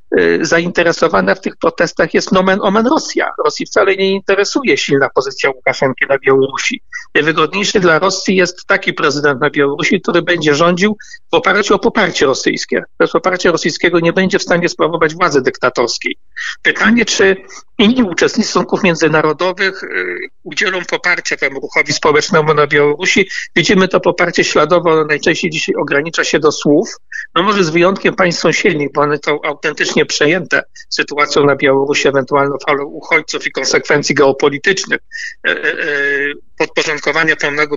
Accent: native